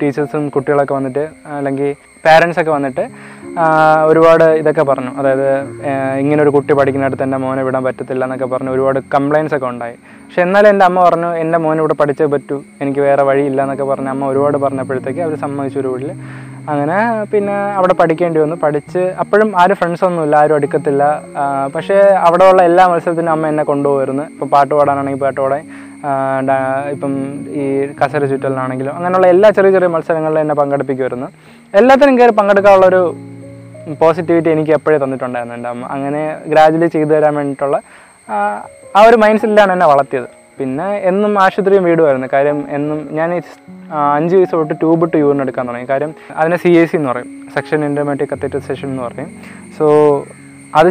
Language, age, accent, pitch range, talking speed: Malayalam, 20-39, native, 140-170 Hz, 145 wpm